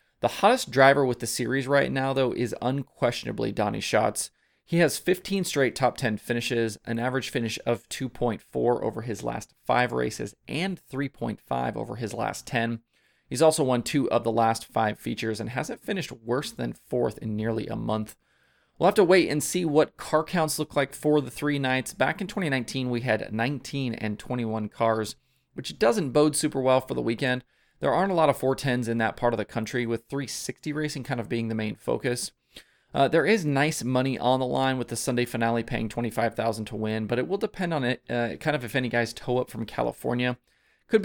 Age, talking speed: 30-49, 205 wpm